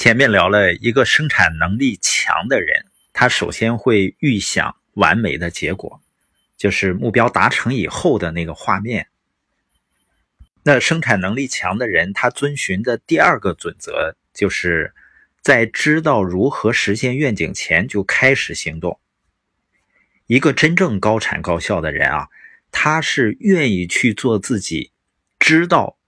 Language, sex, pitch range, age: Chinese, male, 95-135 Hz, 50-69